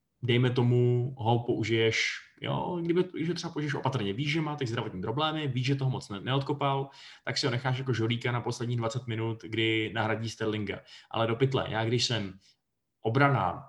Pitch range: 110-130 Hz